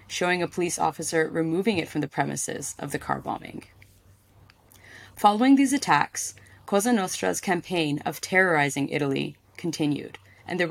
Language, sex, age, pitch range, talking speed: English, female, 20-39, 145-180 Hz, 140 wpm